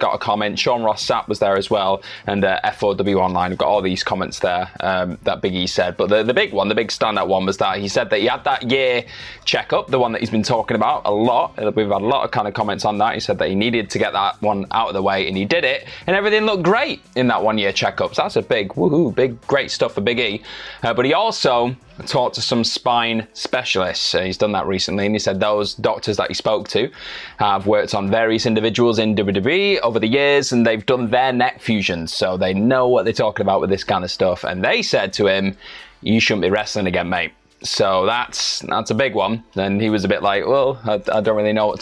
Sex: male